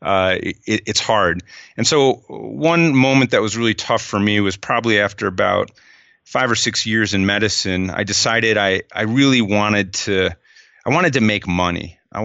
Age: 30-49